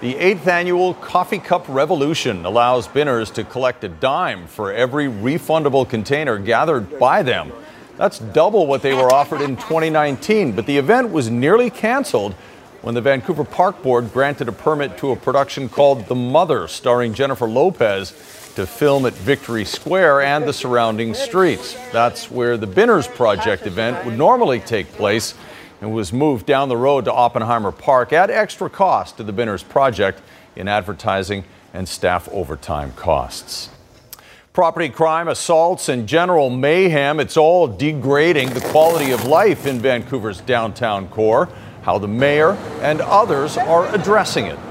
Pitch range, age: 120-155 Hz, 40-59